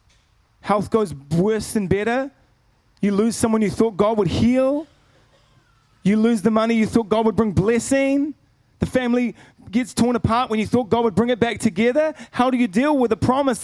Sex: male